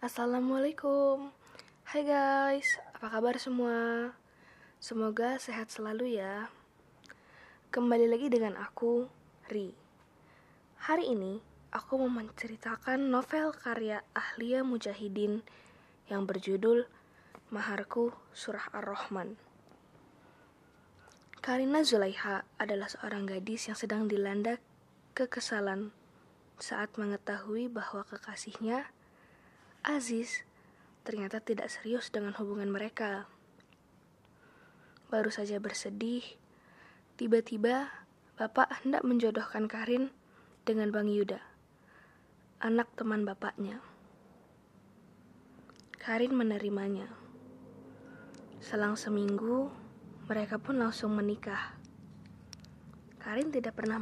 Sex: female